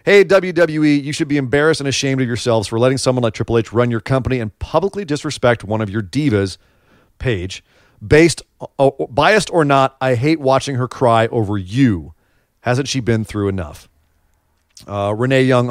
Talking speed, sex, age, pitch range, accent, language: 175 wpm, male, 40-59, 105-135 Hz, American, English